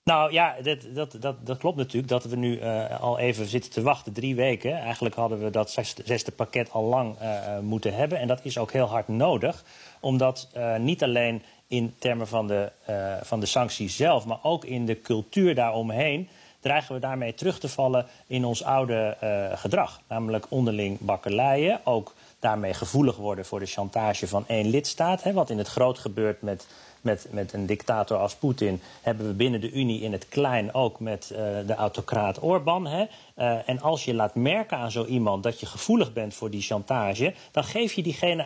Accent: Dutch